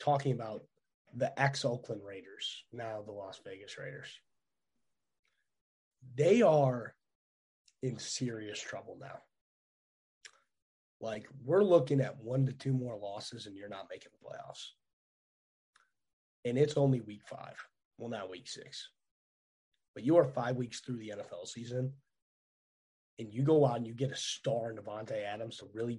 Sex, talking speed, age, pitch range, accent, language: male, 145 wpm, 30-49, 110-145 Hz, American, English